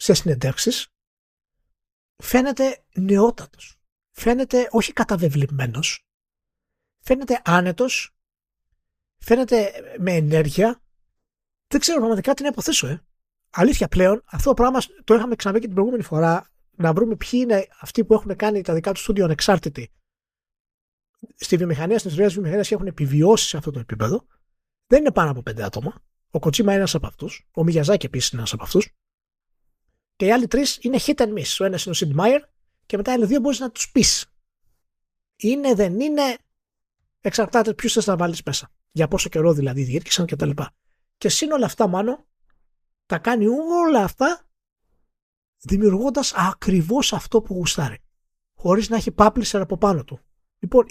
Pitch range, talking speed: 165-240 Hz, 160 wpm